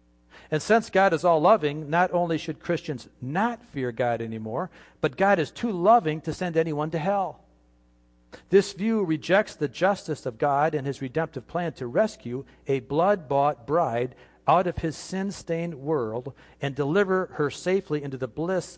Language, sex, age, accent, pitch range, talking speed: English, male, 50-69, American, 105-165 Hz, 165 wpm